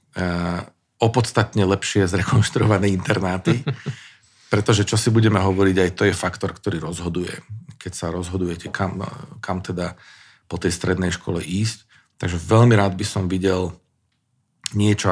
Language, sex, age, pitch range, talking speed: Slovak, male, 40-59, 95-110 Hz, 130 wpm